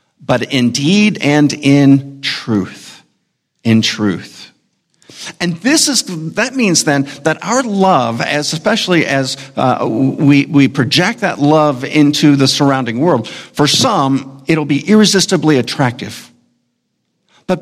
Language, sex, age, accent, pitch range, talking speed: English, male, 50-69, American, 135-175 Hz, 125 wpm